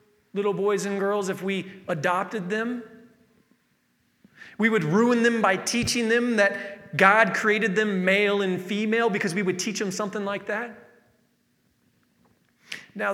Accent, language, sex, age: American, English, male, 30-49